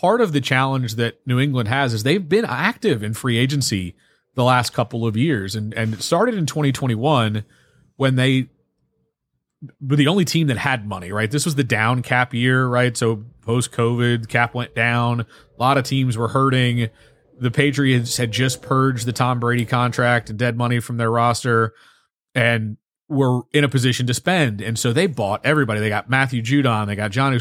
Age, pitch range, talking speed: 30-49, 120-145 Hz, 195 wpm